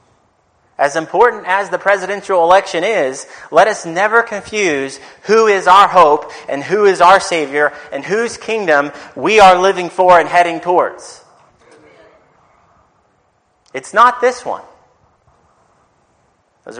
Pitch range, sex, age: 120-175 Hz, male, 30-49